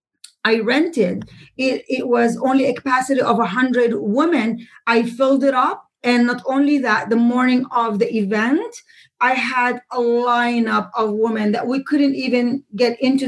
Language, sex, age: English, female, 30-49